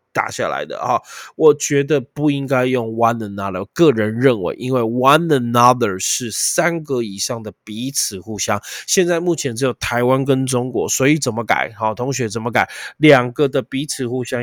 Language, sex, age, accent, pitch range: Chinese, male, 20-39, native, 110-135 Hz